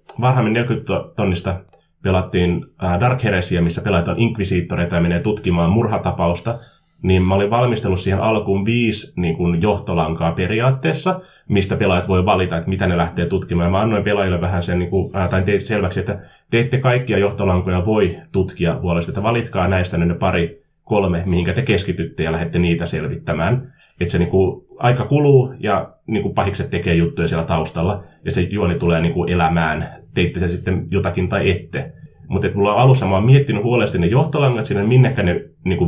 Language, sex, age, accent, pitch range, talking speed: Finnish, male, 20-39, native, 90-115 Hz, 170 wpm